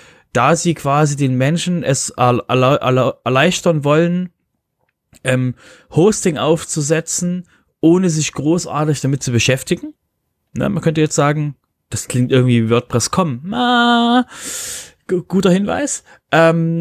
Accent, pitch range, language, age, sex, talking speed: German, 125-155 Hz, German, 30-49, male, 105 wpm